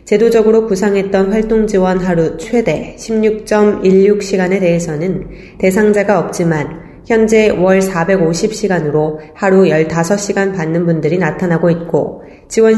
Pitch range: 170-215 Hz